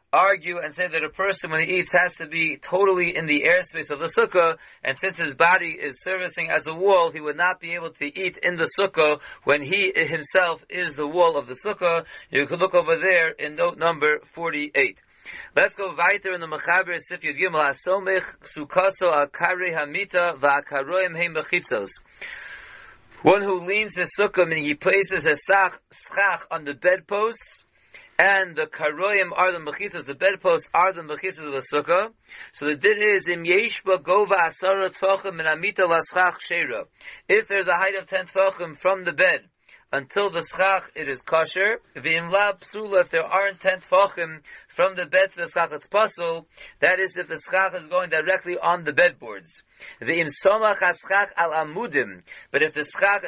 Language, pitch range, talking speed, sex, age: English, 165-195 Hz, 170 wpm, male, 40-59